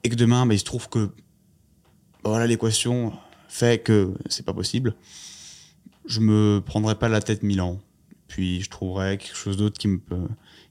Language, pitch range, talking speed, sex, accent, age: French, 100-120 Hz, 195 wpm, male, French, 20-39